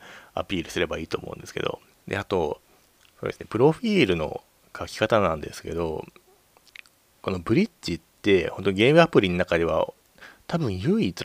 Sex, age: male, 30-49